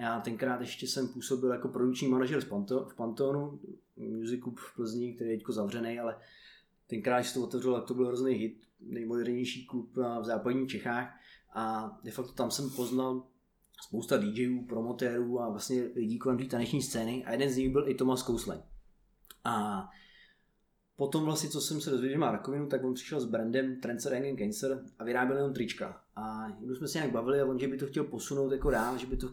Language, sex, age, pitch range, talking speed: Czech, male, 20-39, 120-135 Hz, 200 wpm